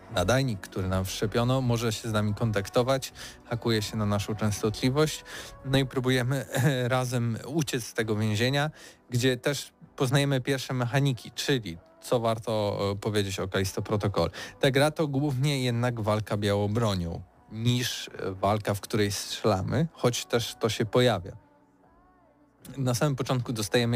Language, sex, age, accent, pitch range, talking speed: Polish, male, 20-39, native, 105-130 Hz, 140 wpm